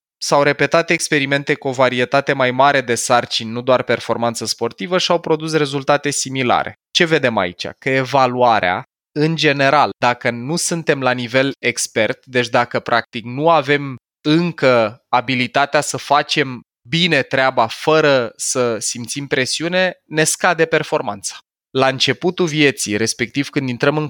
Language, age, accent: Romanian, 20-39, native